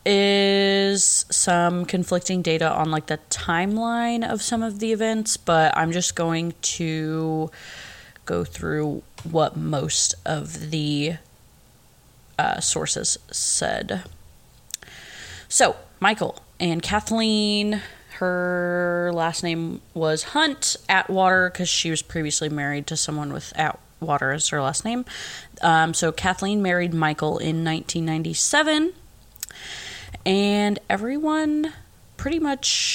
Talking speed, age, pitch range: 110 wpm, 20-39, 160-195 Hz